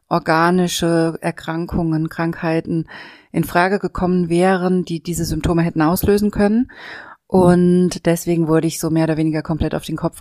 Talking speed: 145 wpm